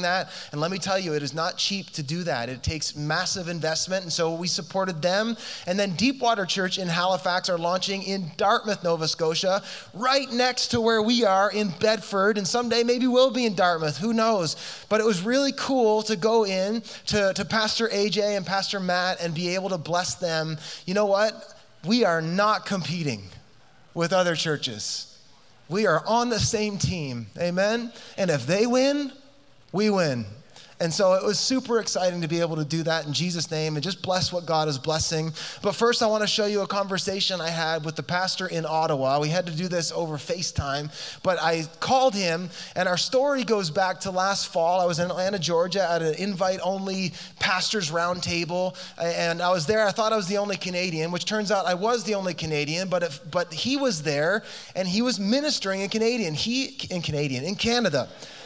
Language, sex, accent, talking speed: English, male, American, 200 wpm